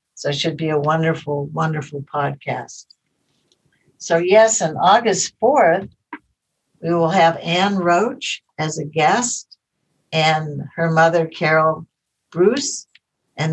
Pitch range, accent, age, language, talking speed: 155-180 Hz, American, 60-79, English, 120 wpm